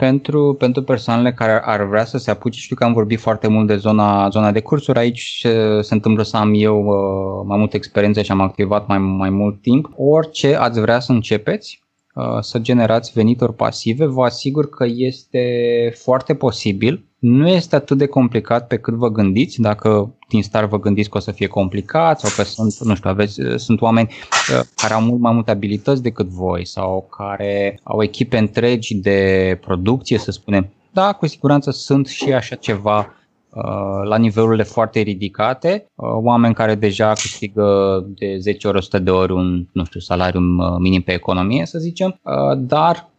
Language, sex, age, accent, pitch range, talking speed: Romanian, male, 20-39, native, 105-130 Hz, 175 wpm